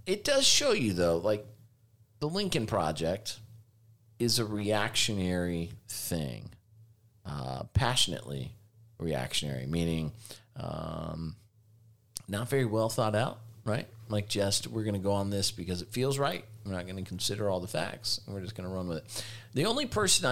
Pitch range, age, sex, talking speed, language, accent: 95-115 Hz, 40-59, male, 160 wpm, English, American